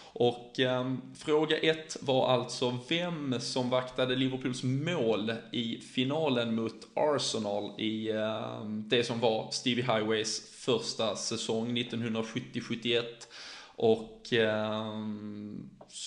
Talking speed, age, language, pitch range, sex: 100 wpm, 20-39, Swedish, 110-130 Hz, male